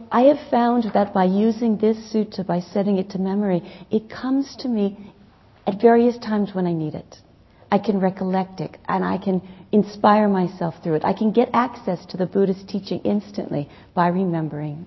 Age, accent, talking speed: 40-59, American, 185 wpm